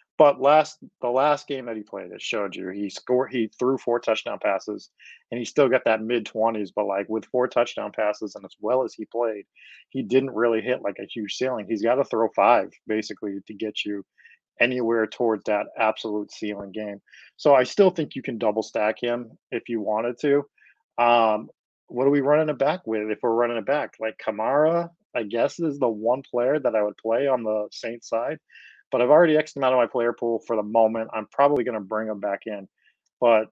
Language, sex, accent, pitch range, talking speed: English, male, American, 105-120 Hz, 220 wpm